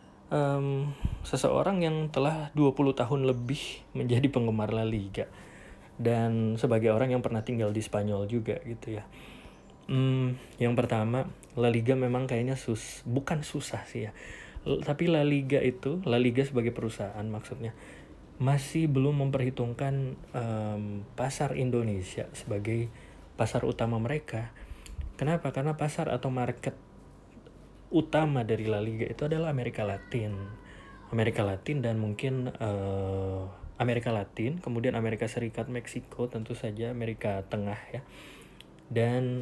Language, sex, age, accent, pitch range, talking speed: Indonesian, male, 20-39, native, 105-130 Hz, 130 wpm